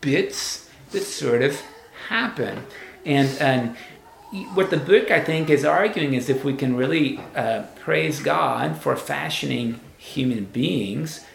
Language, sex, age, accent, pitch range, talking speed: English, male, 40-59, American, 120-145 Hz, 140 wpm